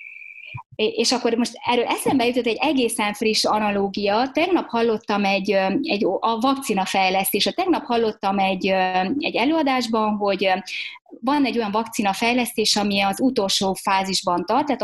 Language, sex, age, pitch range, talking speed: Hungarian, female, 20-39, 195-270 Hz, 130 wpm